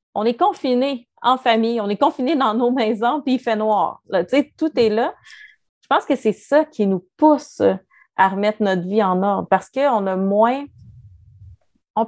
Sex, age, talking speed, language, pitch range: female, 30-49, 190 wpm, French, 210-275 Hz